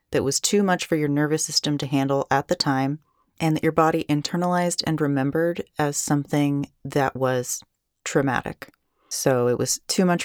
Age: 30-49